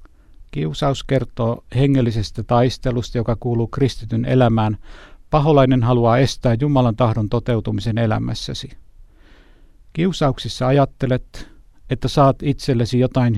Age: 60-79